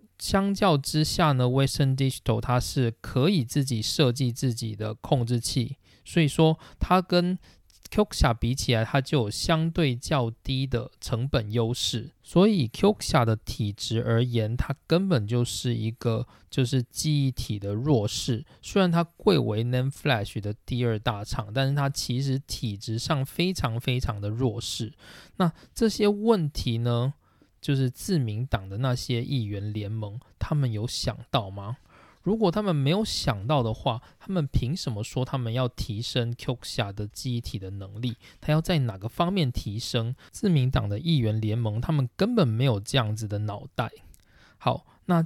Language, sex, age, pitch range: Chinese, male, 20-39, 115-150 Hz